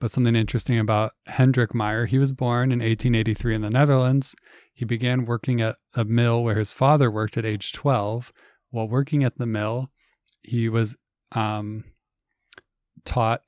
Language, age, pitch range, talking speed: English, 20-39, 110-125 Hz, 160 wpm